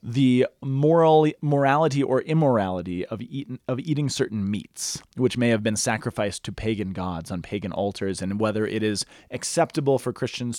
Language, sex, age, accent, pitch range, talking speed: English, male, 30-49, American, 110-150 Hz, 165 wpm